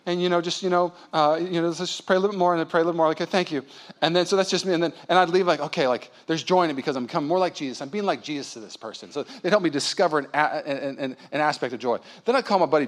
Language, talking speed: English, 345 wpm